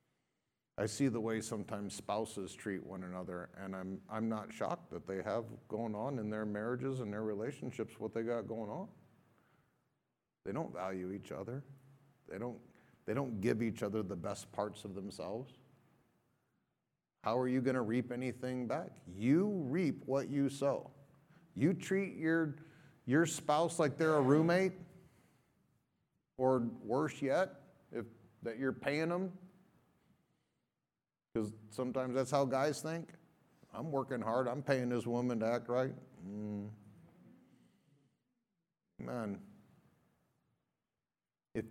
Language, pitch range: English, 115-160 Hz